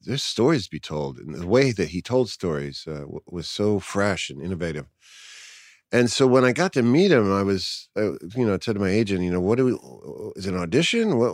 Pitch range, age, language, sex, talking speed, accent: 90-115 Hz, 40-59, English, male, 245 wpm, American